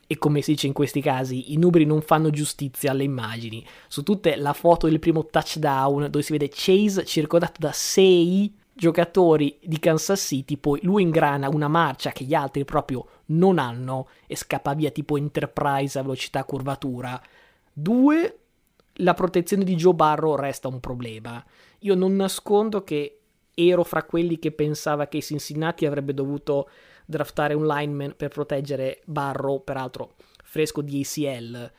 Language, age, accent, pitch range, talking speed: Italian, 20-39, native, 140-165 Hz, 160 wpm